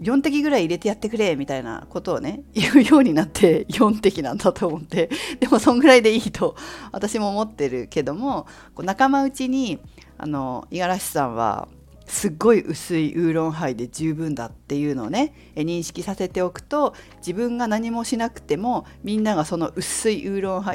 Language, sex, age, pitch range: Japanese, female, 40-59, 150-235 Hz